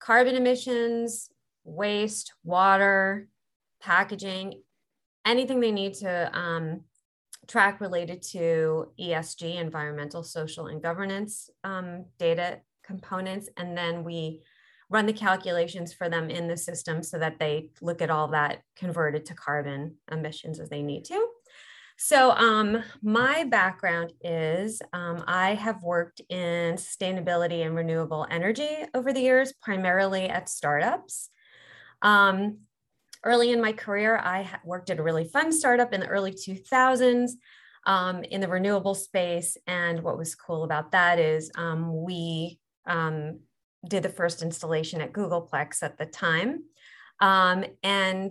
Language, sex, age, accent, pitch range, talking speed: English, female, 30-49, American, 165-210 Hz, 135 wpm